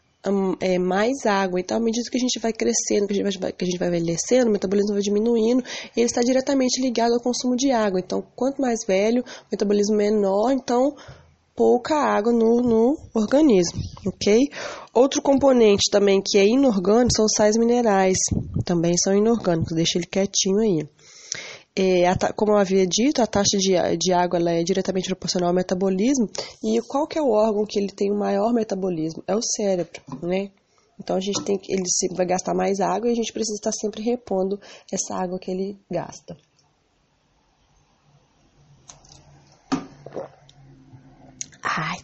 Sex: female